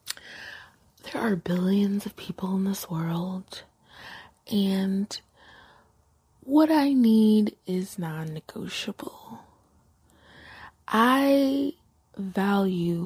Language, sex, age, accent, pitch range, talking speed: English, female, 20-39, American, 180-220 Hz, 75 wpm